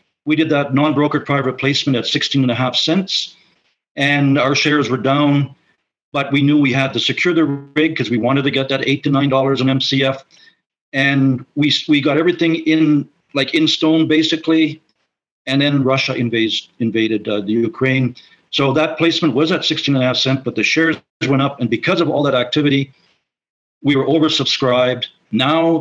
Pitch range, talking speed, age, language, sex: 125-150 Hz, 170 wpm, 50-69, English, male